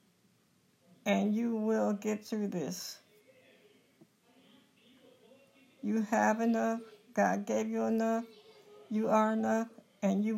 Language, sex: English, female